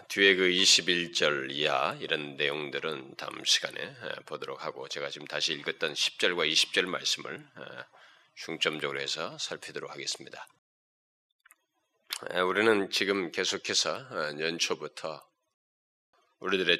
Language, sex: Korean, male